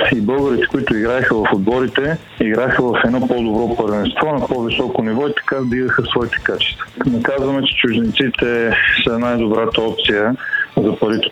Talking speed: 150 wpm